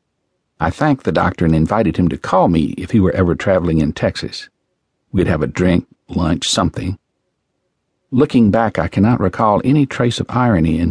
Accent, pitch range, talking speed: American, 85-115 Hz, 180 wpm